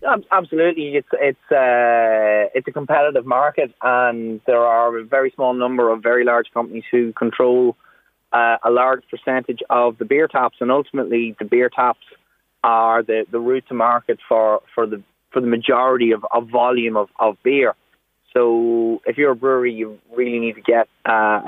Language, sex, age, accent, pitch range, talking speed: English, male, 20-39, Irish, 115-125 Hz, 180 wpm